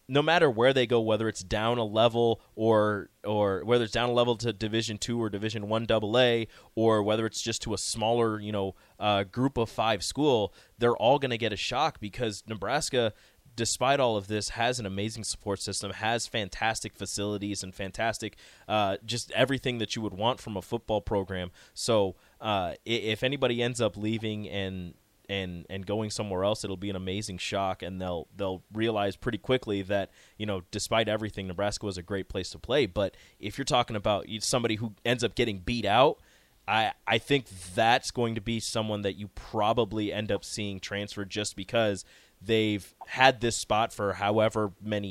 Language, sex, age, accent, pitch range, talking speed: English, male, 20-39, American, 100-115 Hz, 195 wpm